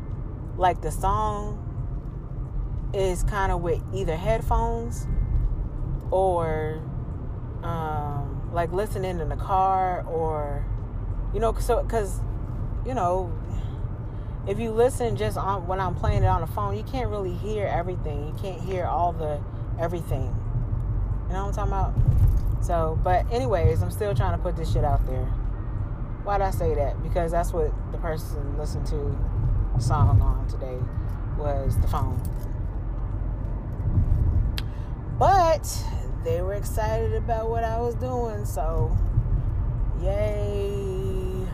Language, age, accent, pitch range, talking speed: English, 30-49, American, 105-120 Hz, 135 wpm